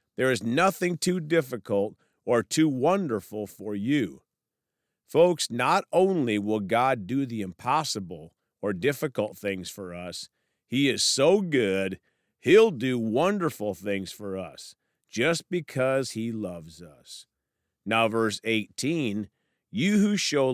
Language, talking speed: English, 130 wpm